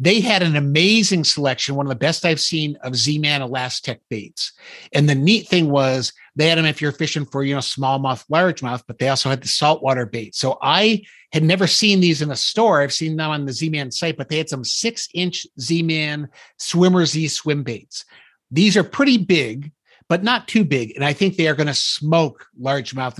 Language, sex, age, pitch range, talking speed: English, male, 50-69, 130-165 Hz, 205 wpm